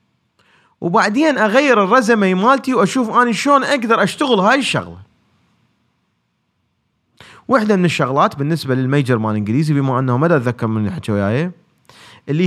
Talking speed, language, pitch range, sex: 130 wpm, Arabic, 130-205 Hz, male